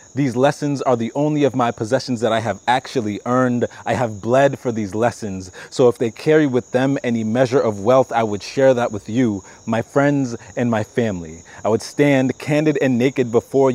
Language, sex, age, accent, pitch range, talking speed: English, male, 30-49, American, 115-135 Hz, 205 wpm